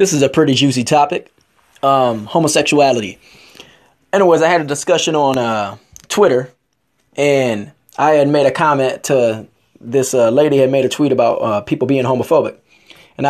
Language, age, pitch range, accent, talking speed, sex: English, 20-39, 125-150 Hz, American, 165 wpm, male